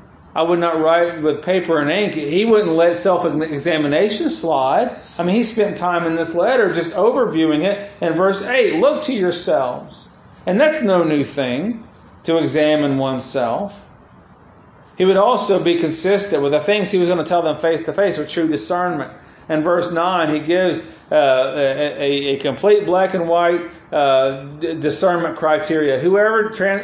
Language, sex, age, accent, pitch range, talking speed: English, male, 40-59, American, 150-200 Hz, 160 wpm